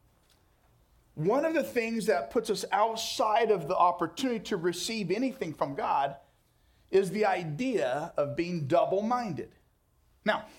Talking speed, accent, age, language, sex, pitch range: 130 wpm, American, 40-59, English, male, 170-225 Hz